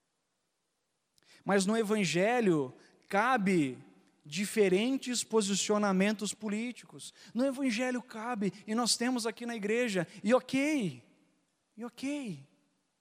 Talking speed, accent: 90 wpm, Brazilian